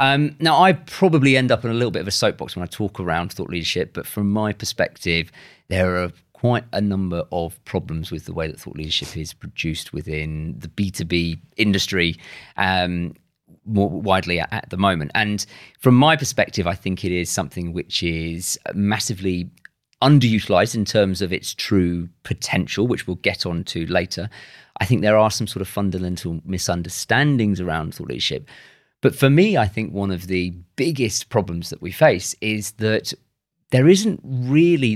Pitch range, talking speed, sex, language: 85-120 Hz, 175 wpm, male, English